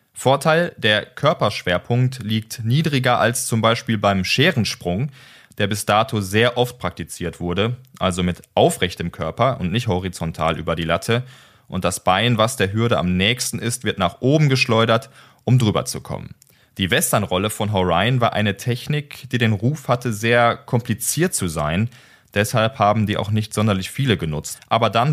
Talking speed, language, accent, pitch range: 165 wpm, German, German, 95-125 Hz